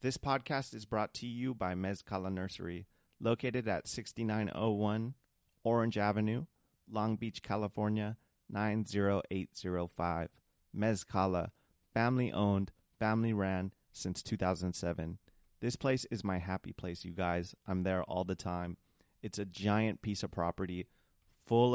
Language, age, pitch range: English, 30-49, 95-110 Hz